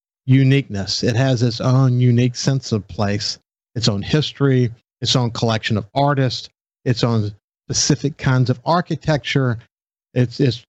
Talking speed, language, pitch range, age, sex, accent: 140 wpm, English, 115-140 Hz, 50-69, male, American